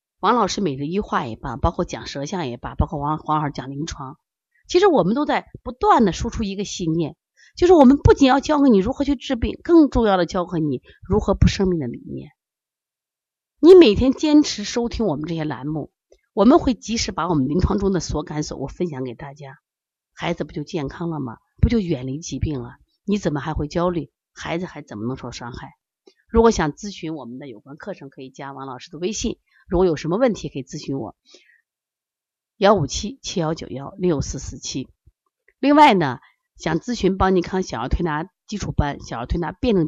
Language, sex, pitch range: Chinese, female, 145-215 Hz